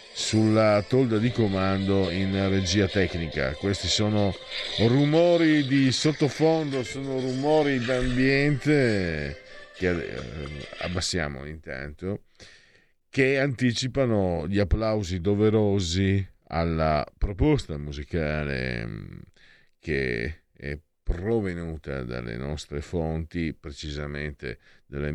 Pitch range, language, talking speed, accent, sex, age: 75-100 Hz, Italian, 80 wpm, native, male, 50-69